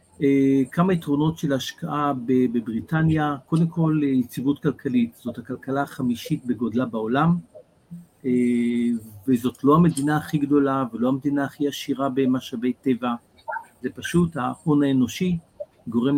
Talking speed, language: 110 wpm, Hebrew